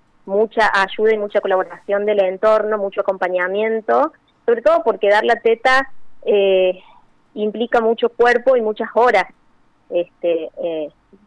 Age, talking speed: 20-39, 130 wpm